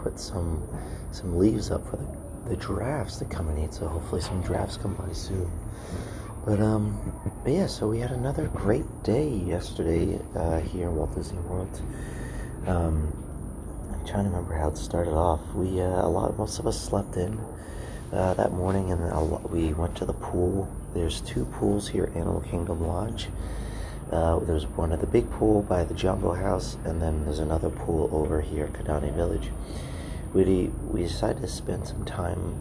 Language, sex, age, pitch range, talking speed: English, male, 30-49, 80-100 Hz, 190 wpm